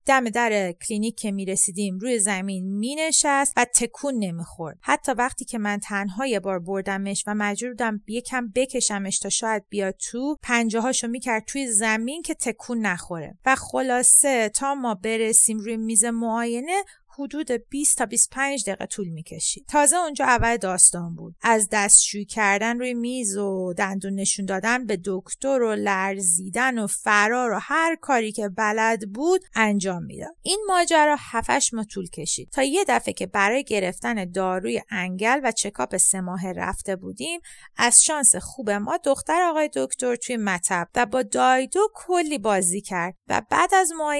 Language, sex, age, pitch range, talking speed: English, female, 30-49, 200-270 Hz, 160 wpm